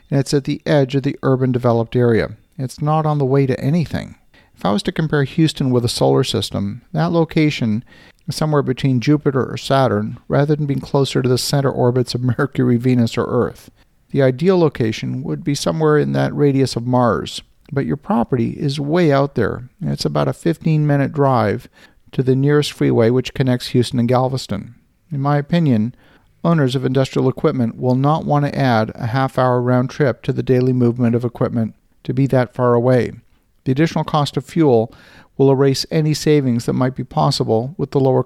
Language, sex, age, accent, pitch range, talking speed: English, male, 50-69, American, 125-145 Hz, 195 wpm